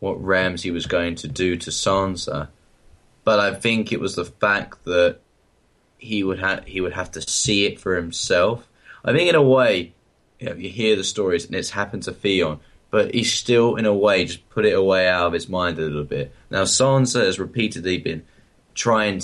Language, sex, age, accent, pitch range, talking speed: English, male, 10-29, British, 85-105 Hz, 210 wpm